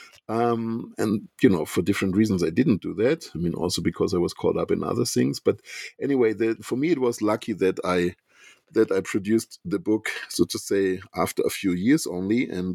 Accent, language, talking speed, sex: German, English, 215 wpm, male